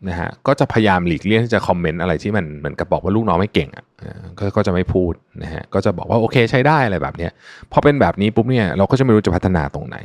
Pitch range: 85-125 Hz